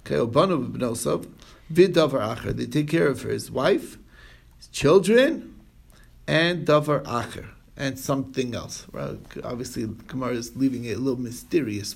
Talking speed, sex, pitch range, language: 155 wpm, male, 120-160 Hz, English